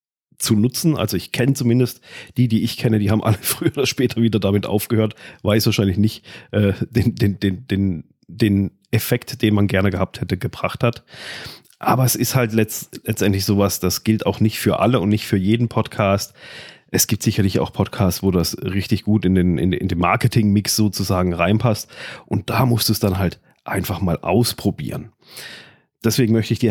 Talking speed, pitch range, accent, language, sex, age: 190 wpm, 95-115 Hz, German, German, male, 40-59